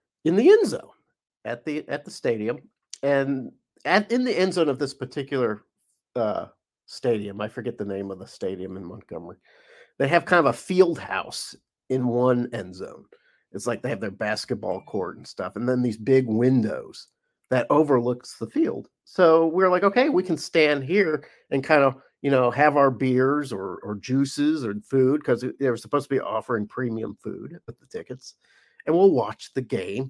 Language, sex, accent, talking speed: English, male, American, 190 wpm